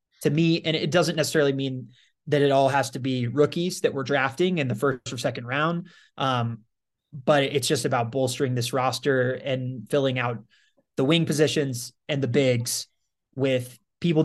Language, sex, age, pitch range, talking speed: English, male, 20-39, 125-145 Hz, 175 wpm